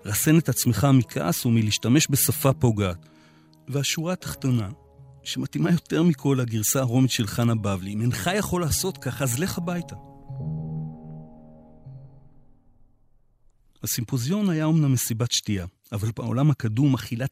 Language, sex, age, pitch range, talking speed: Hebrew, male, 40-59, 110-145 Hz, 120 wpm